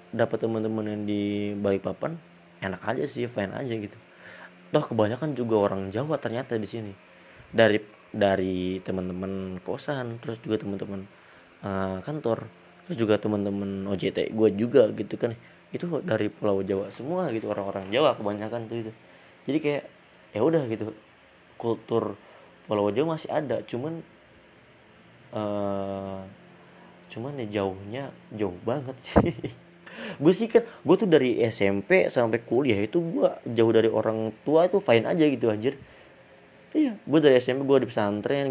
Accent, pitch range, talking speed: native, 100-130 Hz, 145 wpm